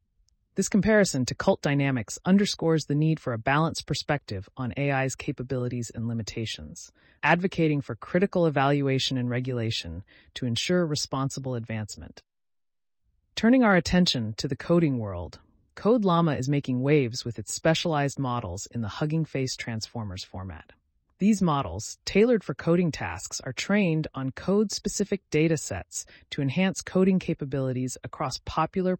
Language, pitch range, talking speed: English, 115-160 Hz, 135 wpm